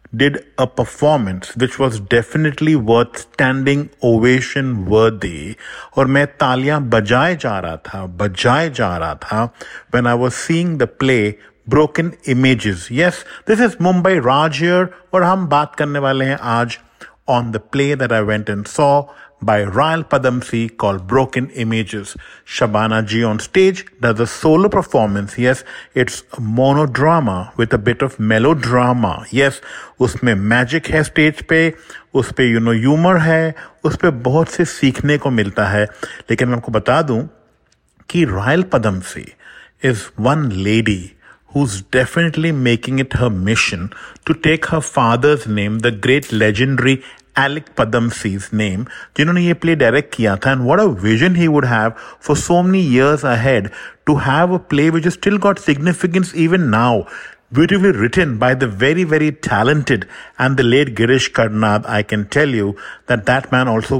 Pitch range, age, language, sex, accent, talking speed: 115-155 Hz, 50-69, English, male, Indian, 140 wpm